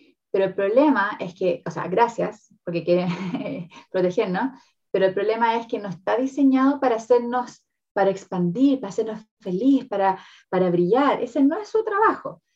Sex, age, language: female, 20-39, Spanish